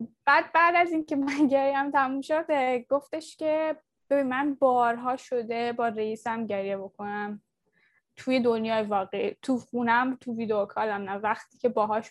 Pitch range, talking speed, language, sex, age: 230-285 Hz, 155 wpm, Persian, female, 10-29